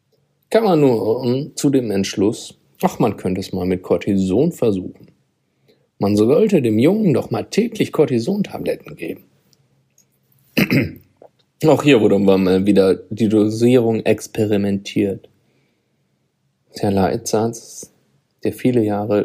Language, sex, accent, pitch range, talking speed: German, male, German, 95-115 Hz, 110 wpm